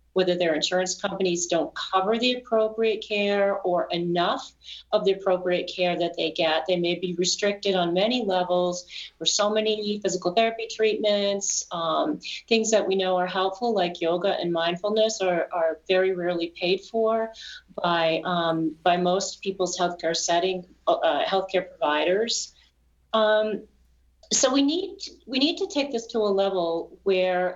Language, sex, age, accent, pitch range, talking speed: English, female, 40-59, American, 175-210 Hz, 155 wpm